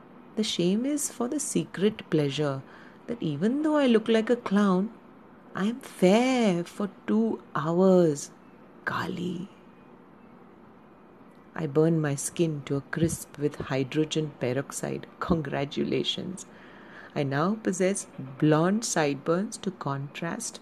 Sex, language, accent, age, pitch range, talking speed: female, English, Indian, 40-59, 155-225 Hz, 115 wpm